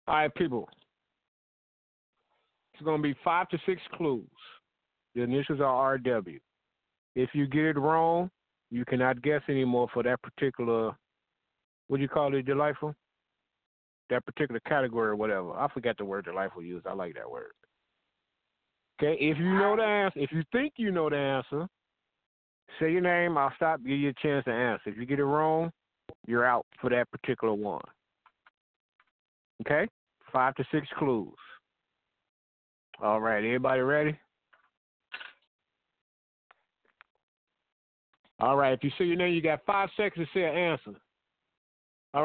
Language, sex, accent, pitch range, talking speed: English, male, American, 125-175 Hz, 155 wpm